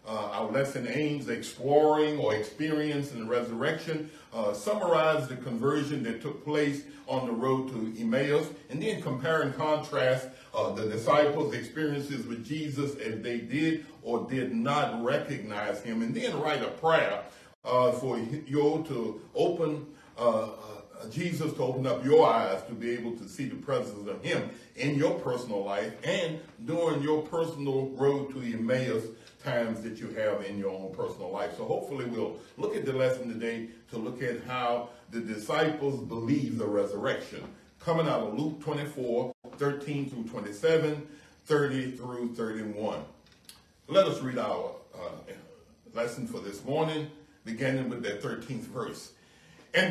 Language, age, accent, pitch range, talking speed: English, 60-79, American, 120-155 Hz, 160 wpm